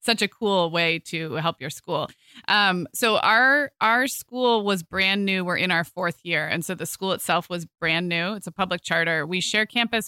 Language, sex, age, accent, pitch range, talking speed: English, female, 20-39, American, 165-210 Hz, 220 wpm